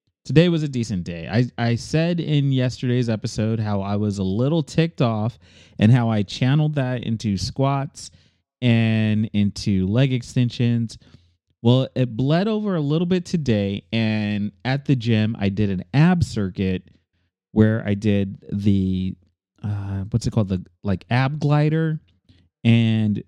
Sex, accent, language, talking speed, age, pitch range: male, American, English, 150 wpm, 30-49, 105-140 Hz